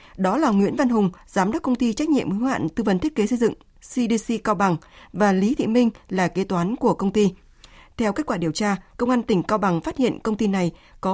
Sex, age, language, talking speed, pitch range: female, 20-39, Vietnamese, 260 wpm, 180-230 Hz